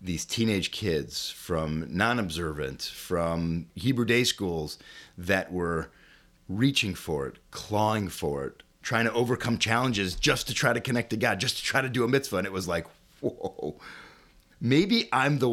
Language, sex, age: English, male, 30-49